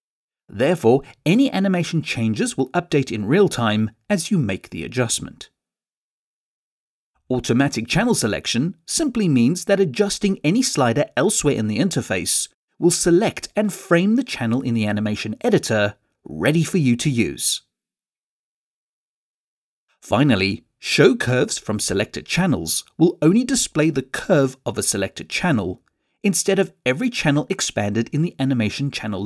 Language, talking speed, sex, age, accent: English, 135 wpm, male, 40-59, British